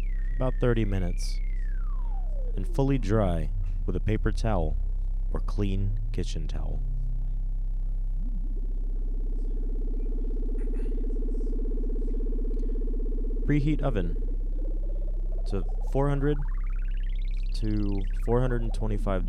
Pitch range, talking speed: 90-110 Hz, 60 wpm